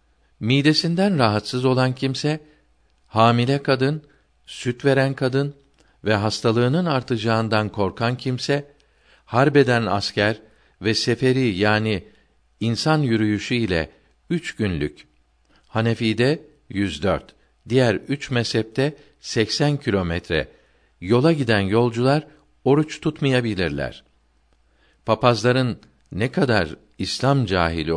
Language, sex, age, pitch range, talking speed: Turkish, male, 50-69, 95-130 Hz, 90 wpm